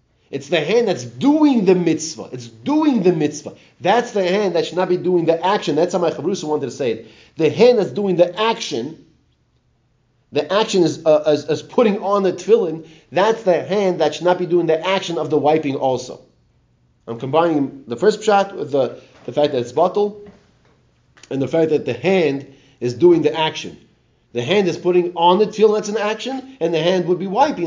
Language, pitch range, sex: English, 145-185 Hz, male